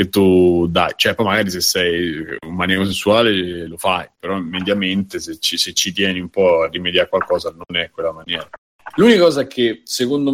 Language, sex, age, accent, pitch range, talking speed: Italian, male, 30-49, native, 95-125 Hz, 185 wpm